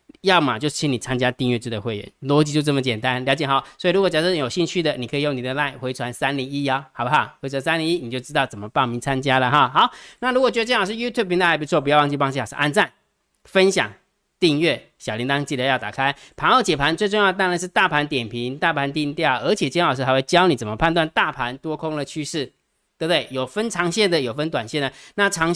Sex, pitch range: male, 130-160 Hz